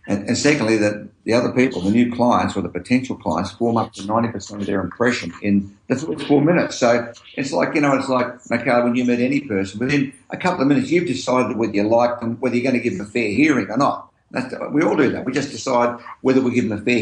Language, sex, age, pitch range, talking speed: English, male, 50-69, 100-130 Hz, 255 wpm